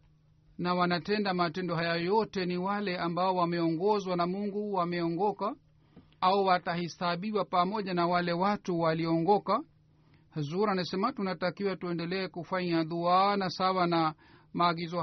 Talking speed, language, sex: 115 wpm, Swahili, male